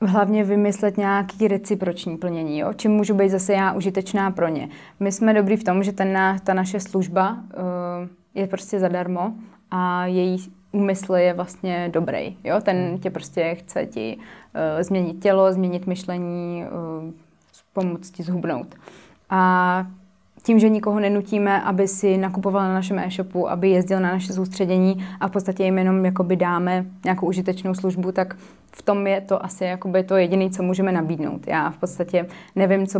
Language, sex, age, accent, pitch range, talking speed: Czech, female, 20-39, native, 180-200 Hz, 160 wpm